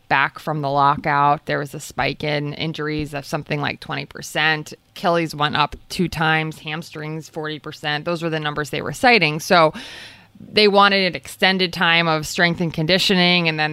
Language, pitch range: English, 155-195 Hz